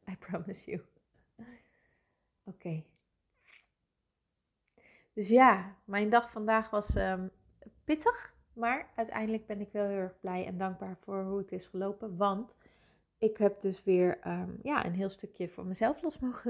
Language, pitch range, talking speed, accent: Dutch, 185-215 Hz, 135 wpm, Dutch